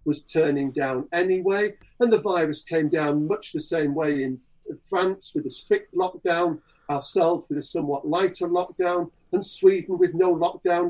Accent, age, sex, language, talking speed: British, 50-69, male, English, 165 wpm